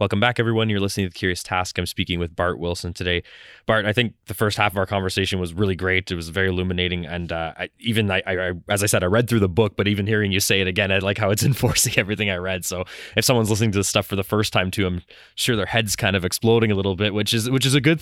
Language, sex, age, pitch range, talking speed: English, male, 20-39, 90-105 Hz, 295 wpm